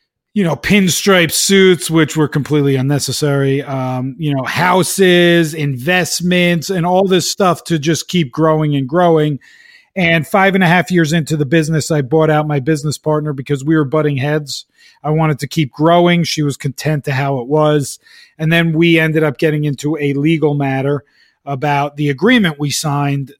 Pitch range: 140-165 Hz